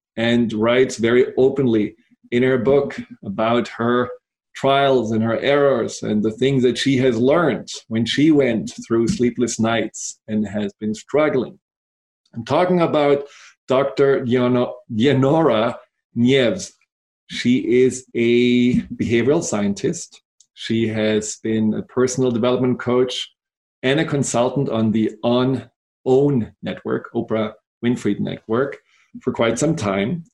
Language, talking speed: English, 125 wpm